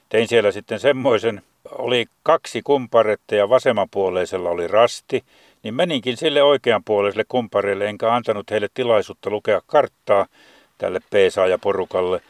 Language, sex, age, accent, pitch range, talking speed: Finnish, male, 60-79, native, 105-125 Hz, 115 wpm